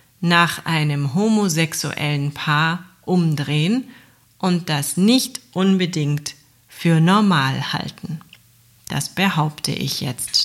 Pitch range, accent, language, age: 145-195 Hz, German, German, 40-59